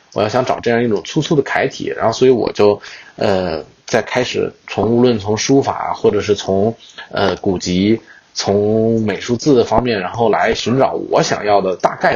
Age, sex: 20-39, male